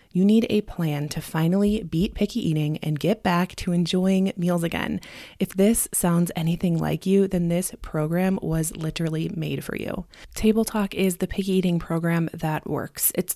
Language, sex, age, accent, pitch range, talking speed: English, female, 20-39, American, 160-200 Hz, 180 wpm